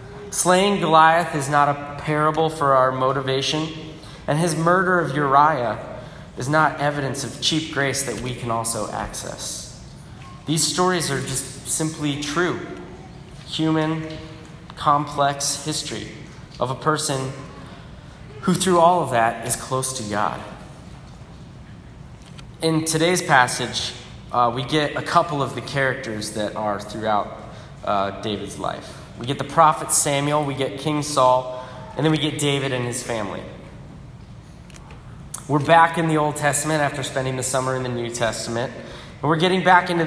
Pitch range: 120-155 Hz